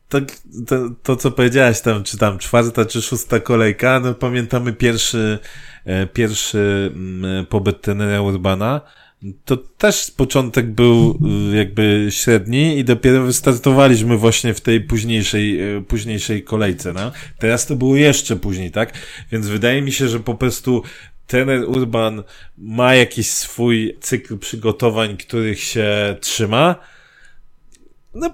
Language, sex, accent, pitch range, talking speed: Polish, male, native, 105-130 Hz, 125 wpm